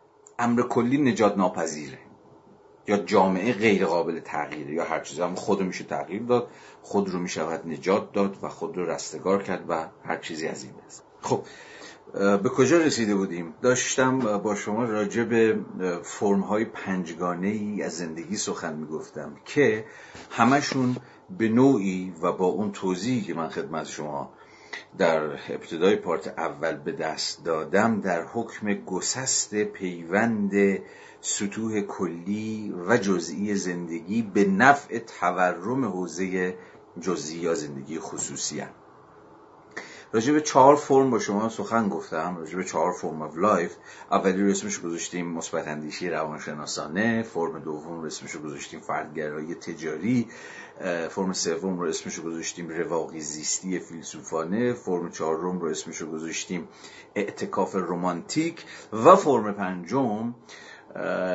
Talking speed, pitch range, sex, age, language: 125 wpm, 85-110 Hz, male, 50-69, Persian